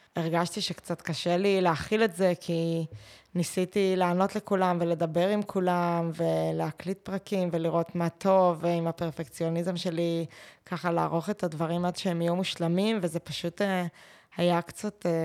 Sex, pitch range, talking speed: female, 160-180 Hz, 135 wpm